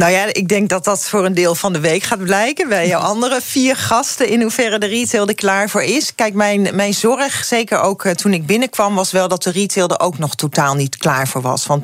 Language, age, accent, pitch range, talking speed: Dutch, 40-59, Dutch, 160-205 Hz, 255 wpm